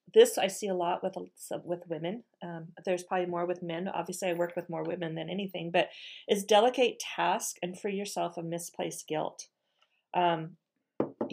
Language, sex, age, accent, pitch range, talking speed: English, female, 40-59, American, 175-215 Hz, 175 wpm